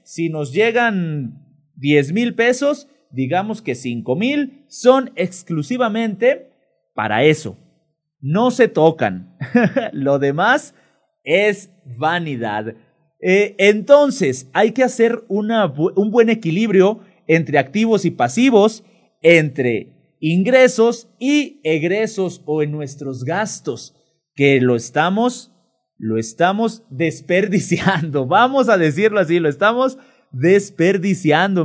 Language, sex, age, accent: Spanish, male, 30-49, Mexican